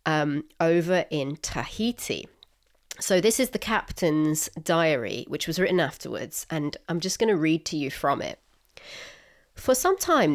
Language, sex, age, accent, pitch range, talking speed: English, female, 30-49, British, 165-225 Hz, 155 wpm